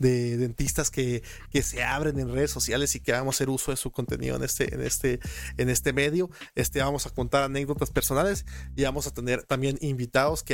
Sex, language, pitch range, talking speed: male, Spanish, 130-150 Hz, 215 wpm